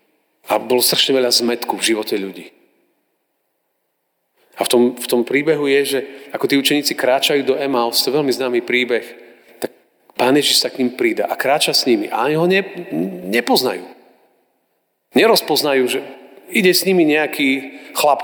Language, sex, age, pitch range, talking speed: Slovak, male, 40-59, 135-175 Hz, 165 wpm